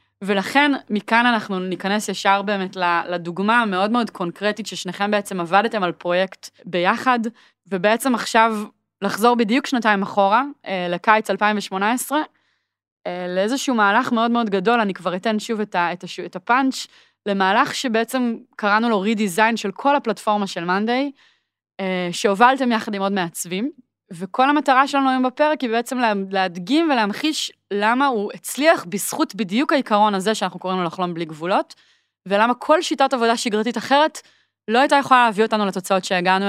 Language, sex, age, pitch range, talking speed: Hebrew, female, 20-39, 190-245 Hz, 140 wpm